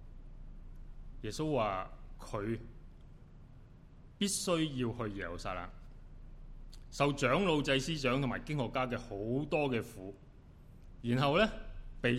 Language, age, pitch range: Chinese, 30-49, 115-150 Hz